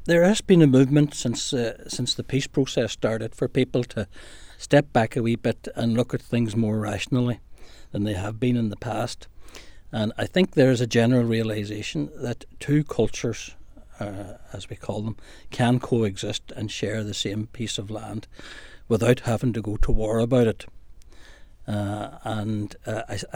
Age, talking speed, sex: 60-79, 175 wpm, male